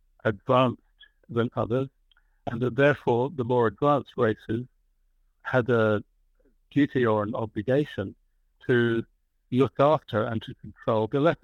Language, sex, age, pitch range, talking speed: English, male, 60-79, 105-125 Hz, 125 wpm